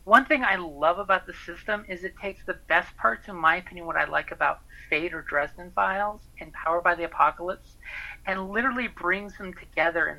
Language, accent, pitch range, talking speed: English, American, 165-210 Hz, 205 wpm